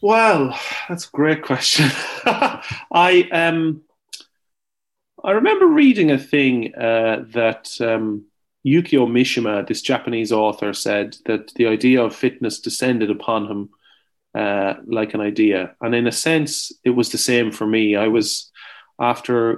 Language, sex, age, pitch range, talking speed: English, male, 30-49, 105-125 Hz, 140 wpm